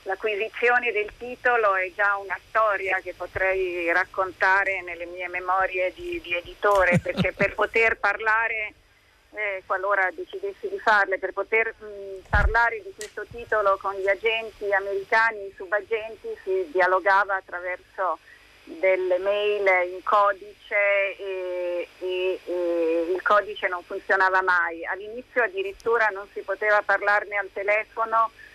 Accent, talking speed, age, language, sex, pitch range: native, 125 wpm, 40-59, Italian, female, 190-215 Hz